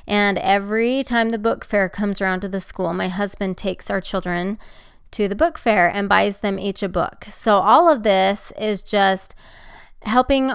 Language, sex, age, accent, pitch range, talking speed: English, female, 20-39, American, 185-225 Hz, 190 wpm